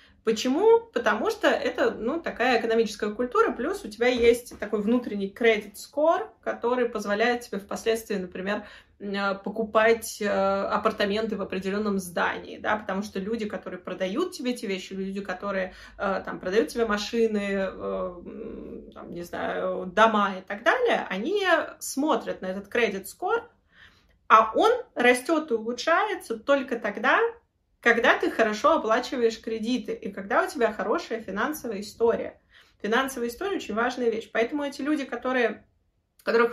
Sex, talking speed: female, 125 wpm